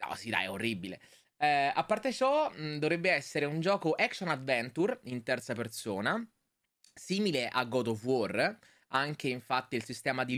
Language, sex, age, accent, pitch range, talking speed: Italian, male, 20-39, native, 115-155 Hz, 155 wpm